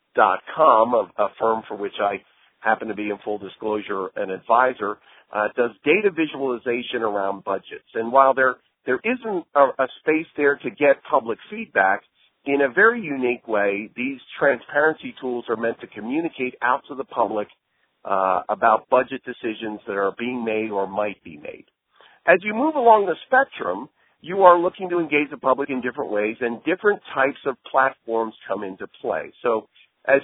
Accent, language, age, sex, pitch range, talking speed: American, English, 50-69, male, 110-150 Hz, 175 wpm